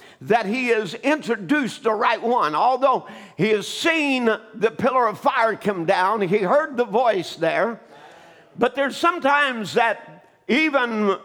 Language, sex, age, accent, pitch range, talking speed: English, male, 50-69, American, 210-275 Hz, 145 wpm